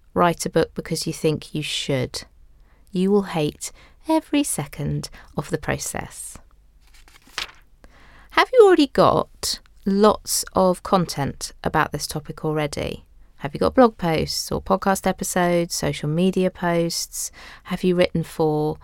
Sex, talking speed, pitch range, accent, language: female, 135 wpm, 160-220 Hz, British, English